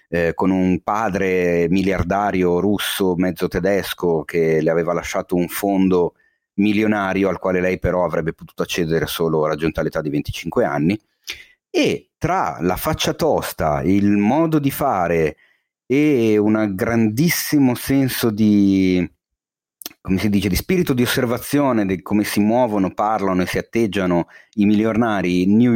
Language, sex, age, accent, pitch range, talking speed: Italian, male, 30-49, native, 90-115 Hz, 135 wpm